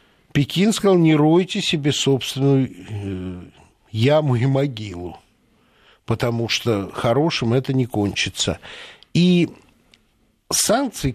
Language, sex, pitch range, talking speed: Russian, male, 115-165 Hz, 90 wpm